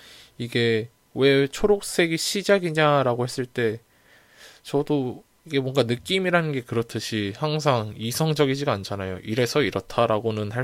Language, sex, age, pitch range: Korean, male, 20-39, 105-150 Hz